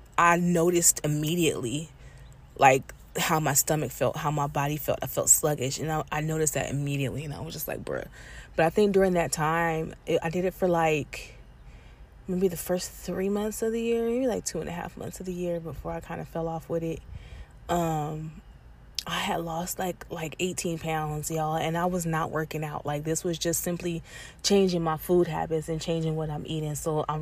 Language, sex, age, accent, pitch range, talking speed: English, female, 20-39, American, 150-185 Hz, 220 wpm